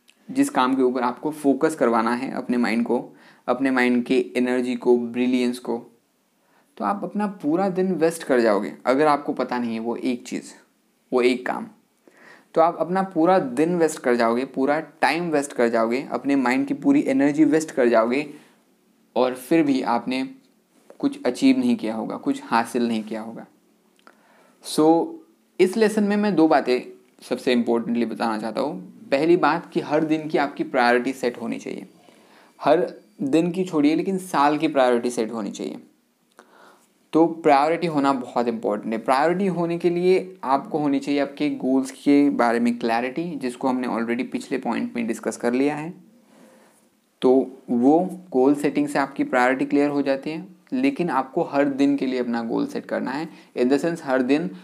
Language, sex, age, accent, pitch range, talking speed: Hindi, male, 20-39, native, 125-175 Hz, 180 wpm